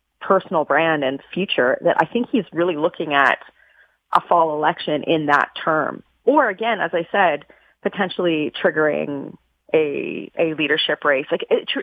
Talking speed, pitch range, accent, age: 155 wpm, 150-205 Hz, American, 30-49